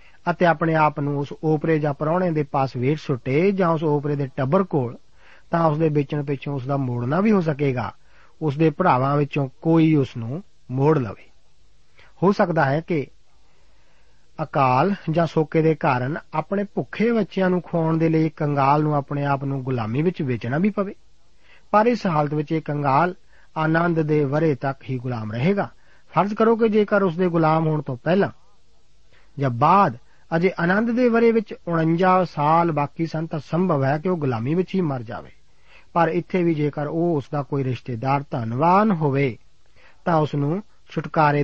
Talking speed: 160 wpm